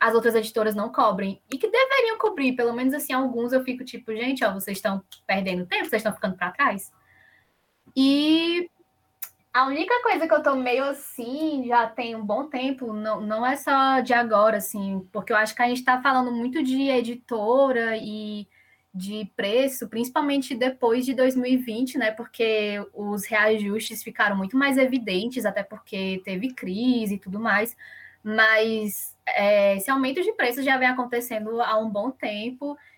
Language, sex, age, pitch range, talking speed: Portuguese, female, 10-29, 220-280 Hz, 170 wpm